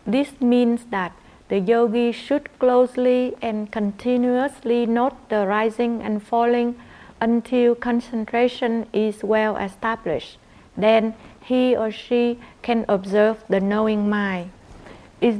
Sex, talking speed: female, 115 wpm